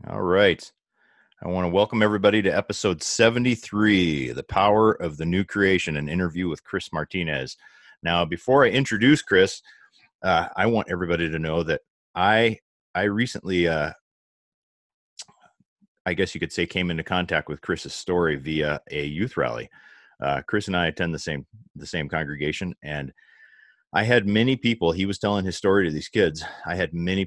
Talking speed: 170 wpm